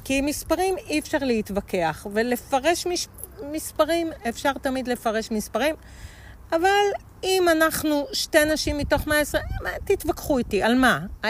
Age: 40-59